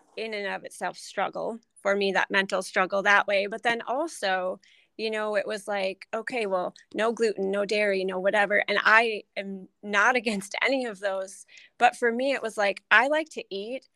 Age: 30-49